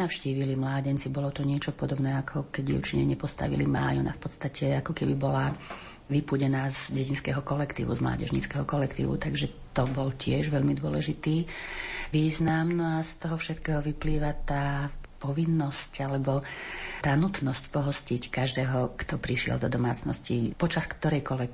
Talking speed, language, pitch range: 135 wpm, Slovak, 130-150 Hz